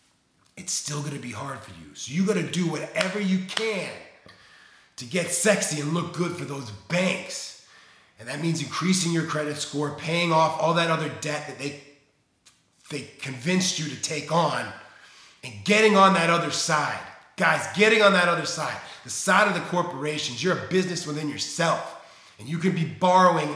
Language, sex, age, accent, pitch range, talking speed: English, male, 30-49, American, 140-180 Hz, 180 wpm